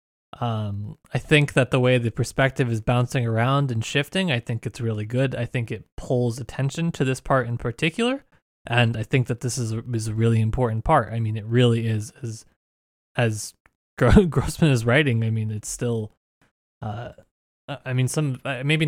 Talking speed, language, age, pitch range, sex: 190 wpm, English, 20-39, 110-135 Hz, male